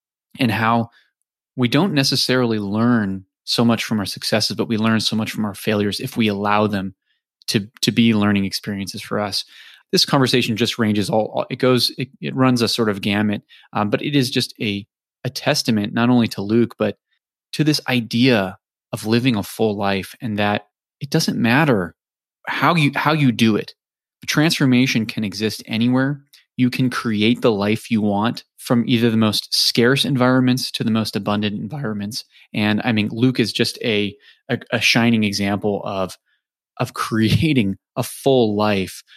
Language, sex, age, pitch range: English, male, 20-39, 105-125 Hz